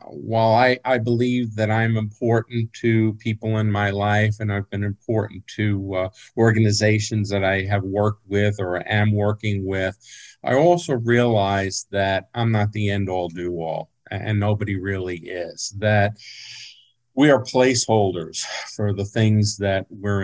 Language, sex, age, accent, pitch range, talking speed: English, male, 50-69, American, 100-115 Hz, 155 wpm